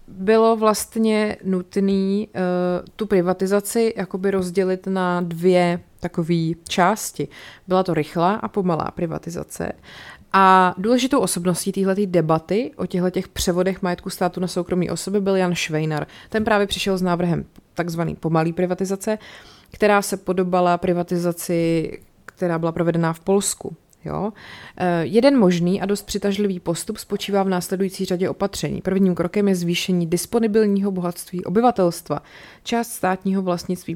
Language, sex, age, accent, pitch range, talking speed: Czech, female, 30-49, native, 175-205 Hz, 130 wpm